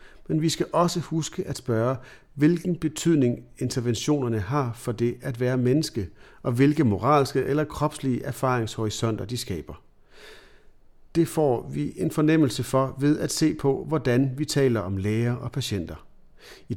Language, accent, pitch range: Danish, native, 110-150 Hz